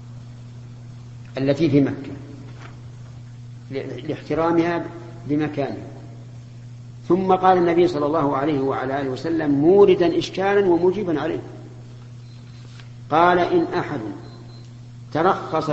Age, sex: 50-69, male